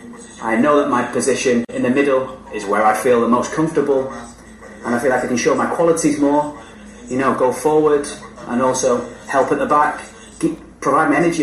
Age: 30-49